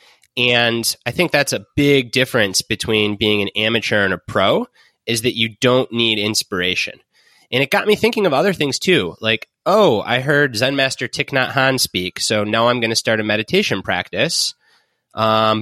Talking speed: 190 wpm